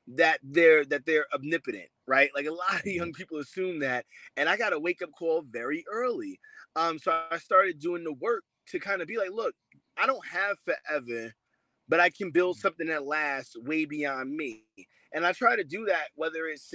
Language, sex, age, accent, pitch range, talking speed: English, male, 20-39, American, 170-255 Hz, 205 wpm